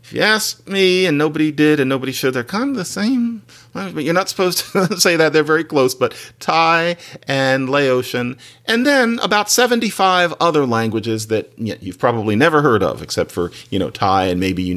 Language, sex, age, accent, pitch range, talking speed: English, male, 40-59, American, 115-170 Hz, 205 wpm